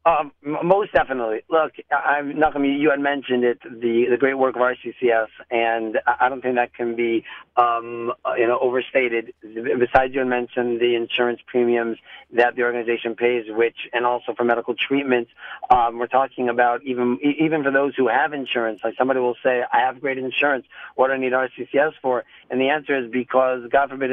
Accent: American